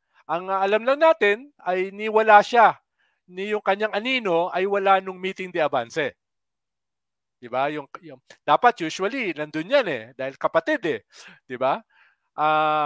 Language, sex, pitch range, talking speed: English, male, 170-220 Hz, 150 wpm